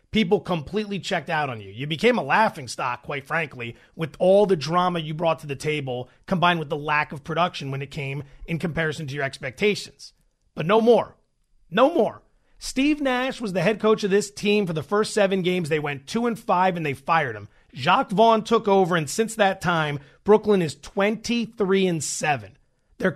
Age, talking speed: 30-49, 200 wpm